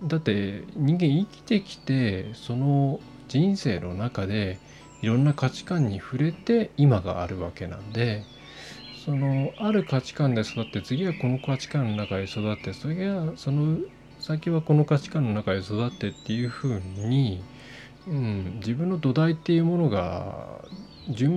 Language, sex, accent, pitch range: Japanese, male, native, 100-150 Hz